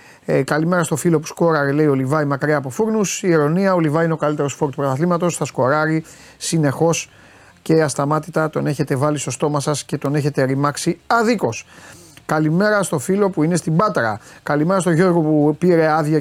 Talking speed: 190 wpm